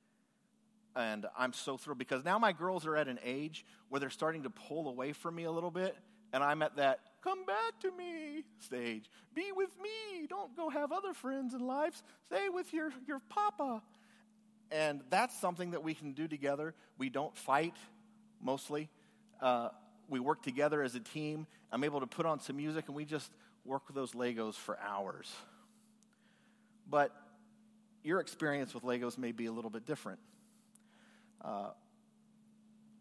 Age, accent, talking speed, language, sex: 40-59, American, 170 wpm, English, male